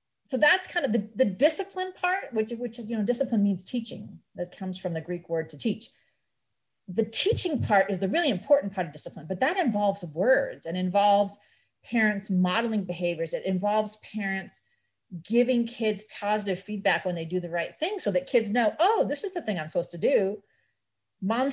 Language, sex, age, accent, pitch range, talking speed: English, female, 40-59, American, 180-260 Hz, 190 wpm